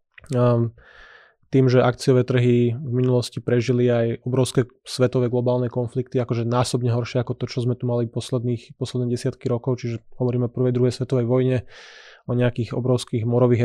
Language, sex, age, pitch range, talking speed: Slovak, male, 20-39, 120-125 Hz, 165 wpm